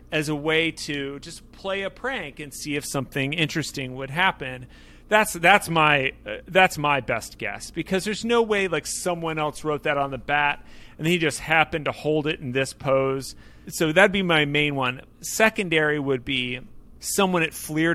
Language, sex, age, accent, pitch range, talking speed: English, male, 30-49, American, 130-160 Hz, 190 wpm